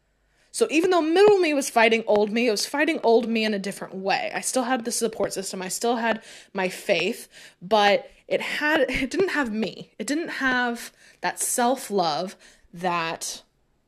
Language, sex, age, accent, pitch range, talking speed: English, female, 20-39, American, 190-290 Hz, 180 wpm